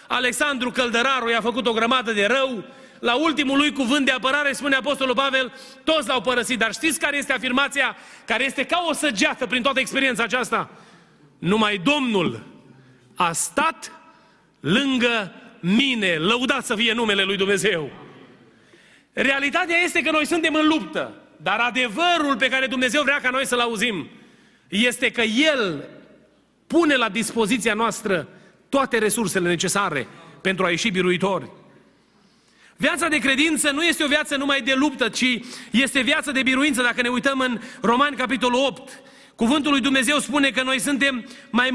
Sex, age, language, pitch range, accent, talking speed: male, 30-49, Romanian, 230-280 Hz, native, 155 wpm